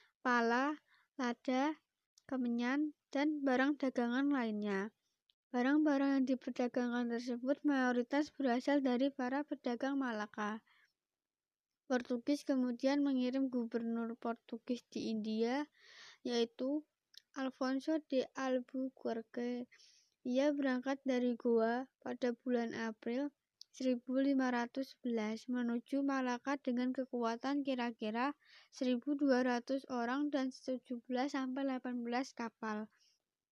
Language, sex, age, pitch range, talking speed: Indonesian, female, 20-39, 245-275 Hz, 85 wpm